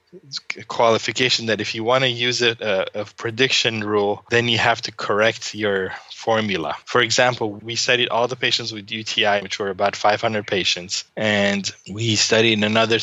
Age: 20-39